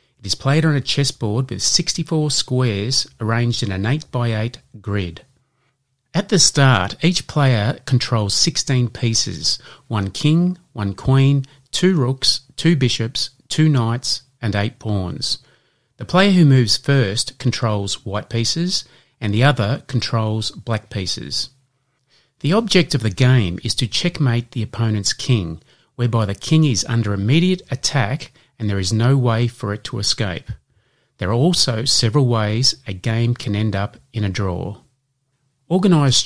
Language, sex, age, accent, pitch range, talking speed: English, male, 30-49, Australian, 110-135 Hz, 150 wpm